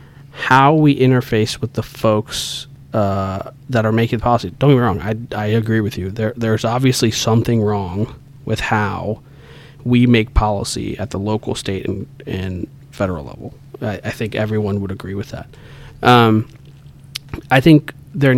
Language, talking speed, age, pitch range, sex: English, 165 wpm, 30-49, 110-135 Hz, male